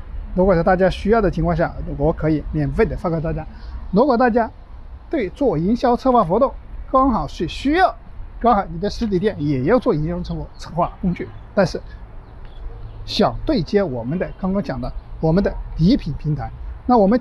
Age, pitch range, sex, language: 50-69, 150-220 Hz, male, Chinese